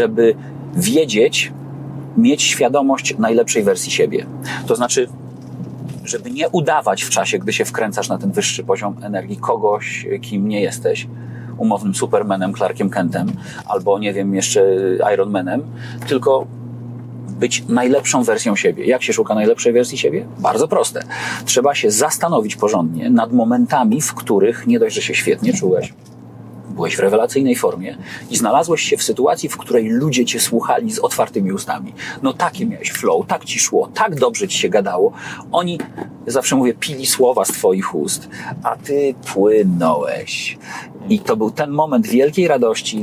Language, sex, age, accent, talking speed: Polish, male, 40-59, native, 150 wpm